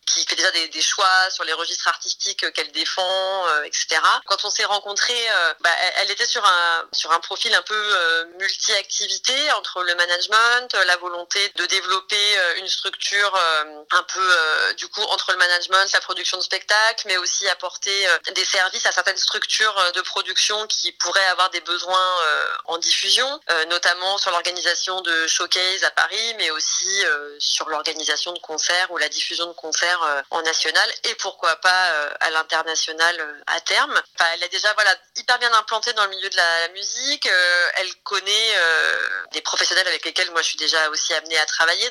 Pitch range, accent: 175-215 Hz, French